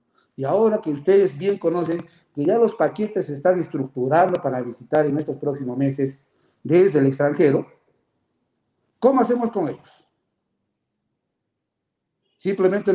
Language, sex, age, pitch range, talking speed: Spanish, male, 50-69, 145-190 Hz, 125 wpm